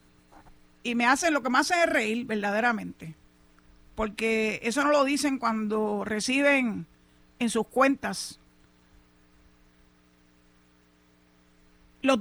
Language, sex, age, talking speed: Spanish, female, 50-69, 100 wpm